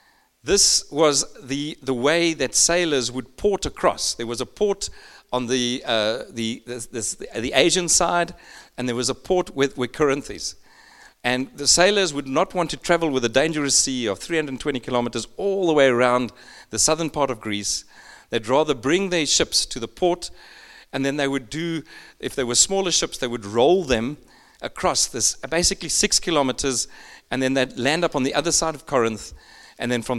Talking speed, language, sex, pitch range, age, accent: 195 wpm, English, male, 125-170 Hz, 40-59, South African